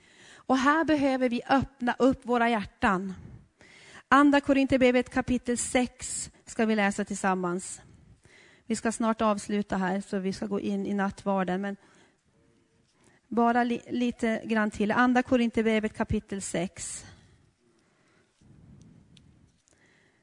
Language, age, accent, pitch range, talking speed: Swedish, 30-49, native, 200-255 Hz, 115 wpm